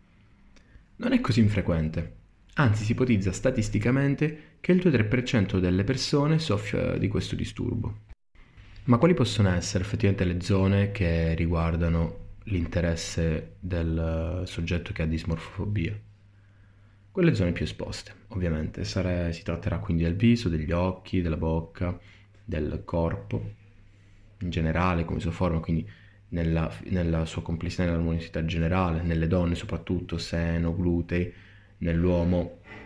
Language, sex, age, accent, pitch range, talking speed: Italian, male, 20-39, native, 85-105 Hz, 120 wpm